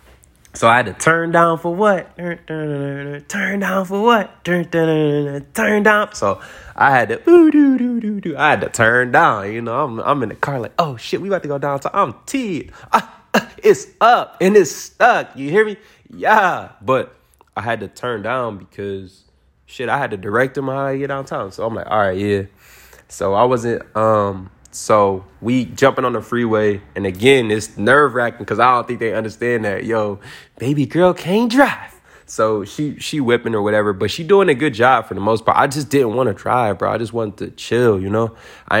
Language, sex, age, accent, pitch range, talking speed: English, male, 20-39, American, 100-155 Hz, 200 wpm